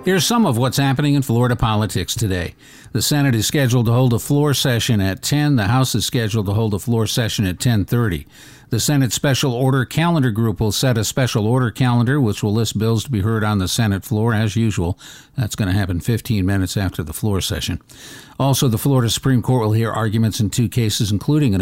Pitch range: 110-130 Hz